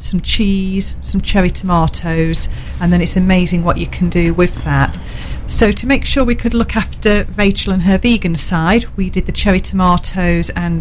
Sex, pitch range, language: female, 170-210 Hz, English